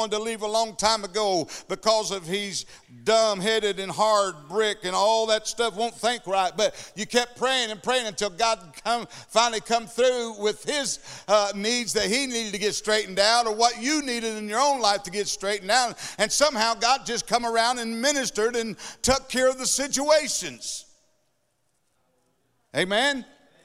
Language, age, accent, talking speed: English, 60-79, American, 180 wpm